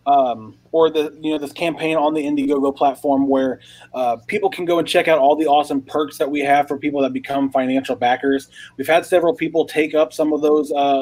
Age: 30-49